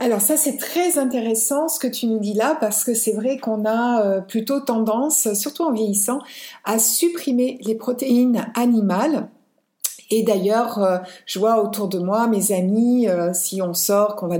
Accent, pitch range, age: French, 200-250 Hz, 50-69